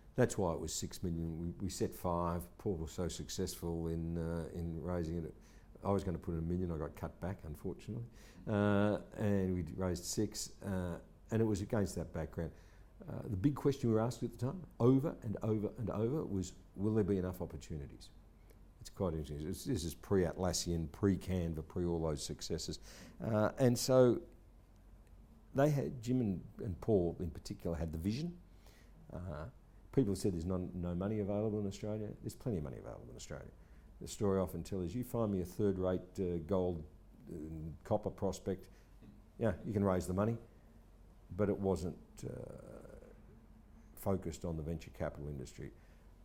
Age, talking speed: 60-79, 185 wpm